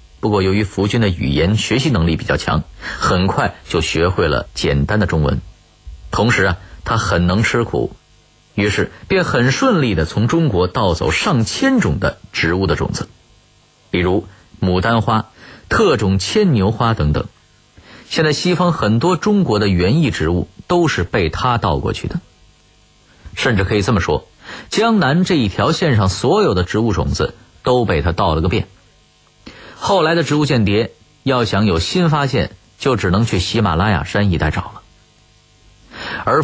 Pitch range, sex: 95-140 Hz, male